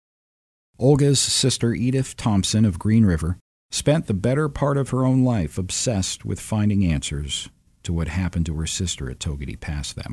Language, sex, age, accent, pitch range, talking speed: English, male, 40-59, American, 75-105 Hz, 170 wpm